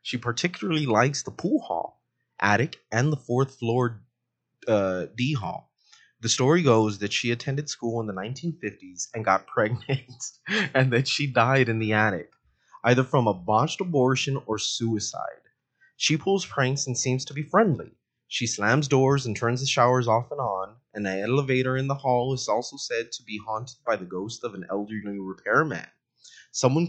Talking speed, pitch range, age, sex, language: 175 wpm, 105-135 Hz, 20-39, male, English